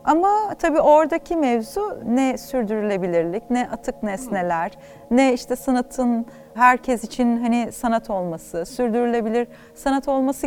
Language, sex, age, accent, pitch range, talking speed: Turkish, female, 30-49, native, 205-285 Hz, 115 wpm